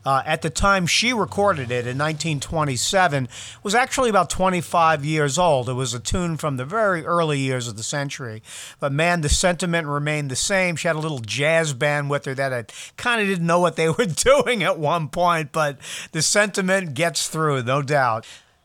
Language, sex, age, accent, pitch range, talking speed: English, male, 50-69, American, 135-185 Hz, 200 wpm